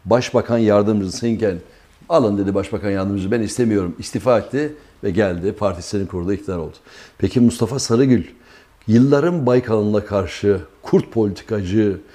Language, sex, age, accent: Turkish, male, 60-79, native